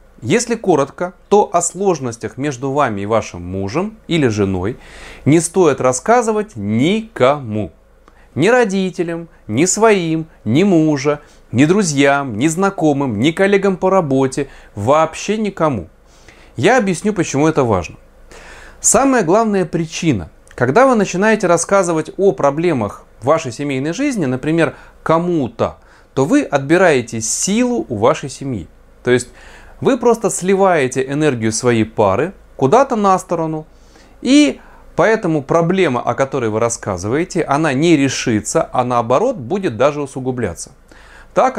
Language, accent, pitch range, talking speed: Russian, native, 125-190 Hz, 125 wpm